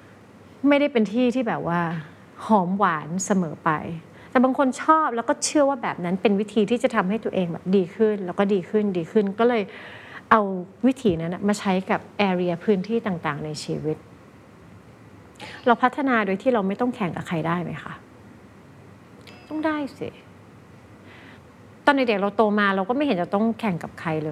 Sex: female